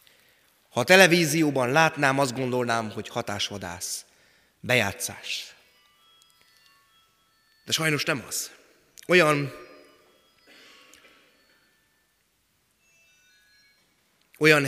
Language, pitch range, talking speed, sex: Hungarian, 115-160 Hz, 60 wpm, male